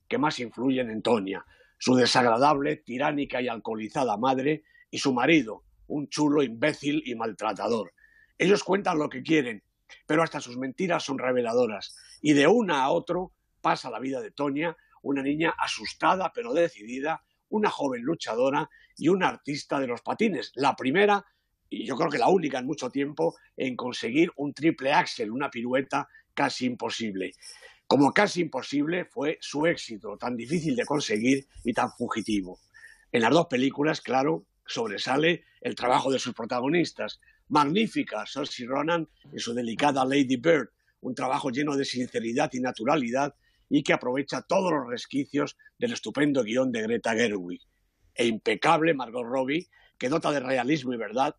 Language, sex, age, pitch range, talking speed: Spanish, male, 50-69, 130-175 Hz, 160 wpm